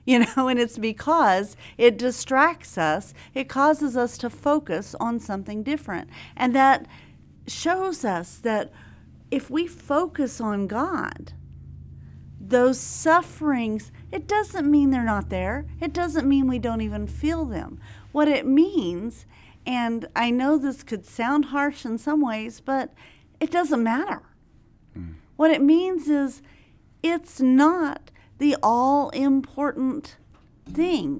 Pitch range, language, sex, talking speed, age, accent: 240-300 Hz, English, female, 135 wpm, 40-59, American